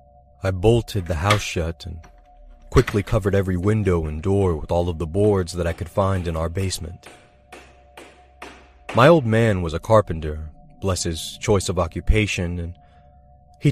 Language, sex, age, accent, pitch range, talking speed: English, male, 30-49, American, 75-105 Hz, 160 wpm